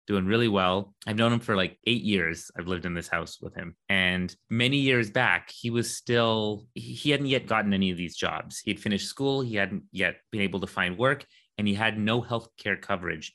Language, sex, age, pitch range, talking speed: English, male, 30-49, 95-120 Hz, 225 wpm